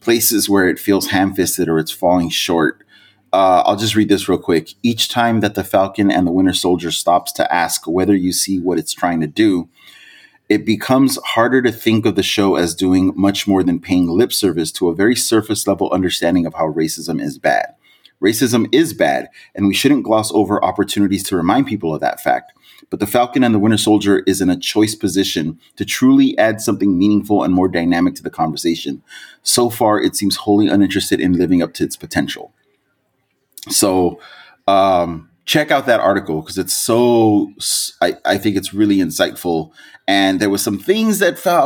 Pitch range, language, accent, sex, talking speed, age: 95-145 Hz, English, American, male, 195 wpm, 30-49